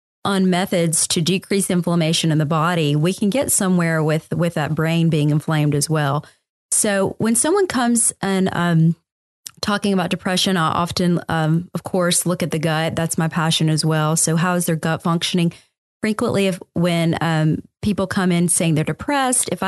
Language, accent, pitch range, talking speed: English, American, 160-190 Hz, 185 wpm